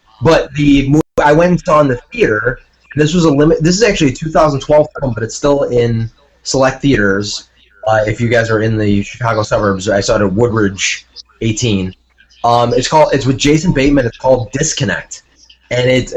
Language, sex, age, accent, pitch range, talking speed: English, male, 20-39, American, 105-135 Hz, 195 wpm